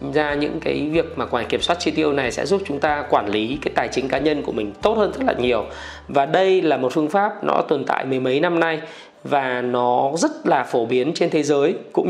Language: Vietnamese